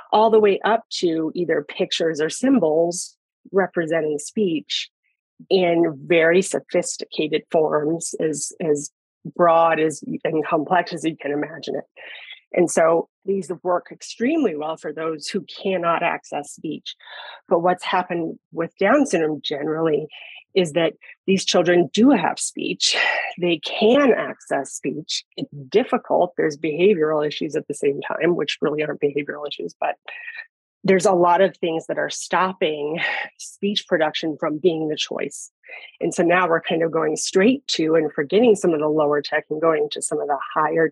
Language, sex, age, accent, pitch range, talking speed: English, female, 30-49, American, 160-200 Hz, 155 wpm